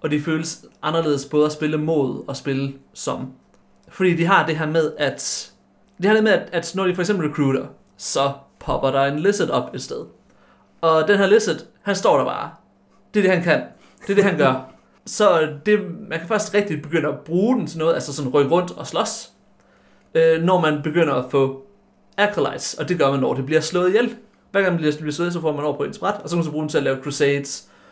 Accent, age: native, 30-49